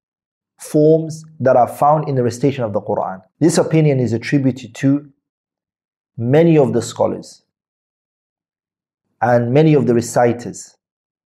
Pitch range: 115-140 Hz